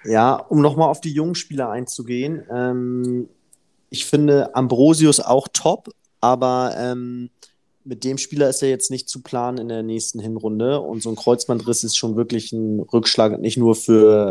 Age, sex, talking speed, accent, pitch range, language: 20-39, male, 170 wpm, German, 110-125 Hz, German